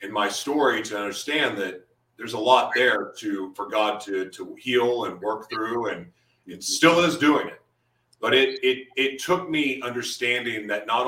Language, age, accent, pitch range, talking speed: English, 40-59, American, 105-145 Hz, 175 wpm